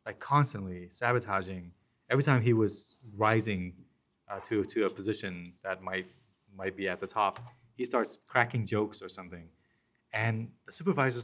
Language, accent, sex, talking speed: English, American, male, 155 wpm